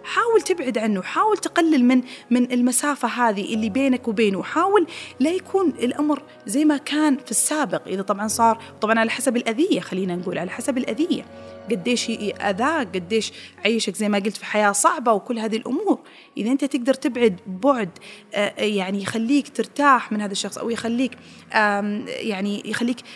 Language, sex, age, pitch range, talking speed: Arabic, female, 20-39, 215-285 Hz, 160 wpm